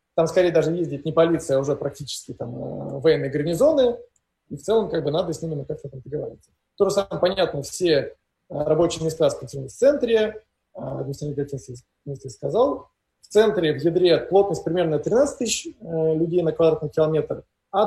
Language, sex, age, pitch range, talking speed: Russian, male, 20-39, 145-185 Hz, 170 wpm